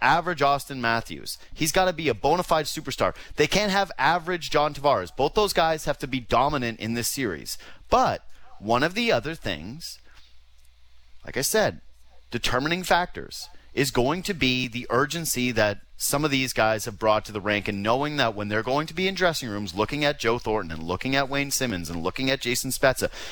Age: 30-49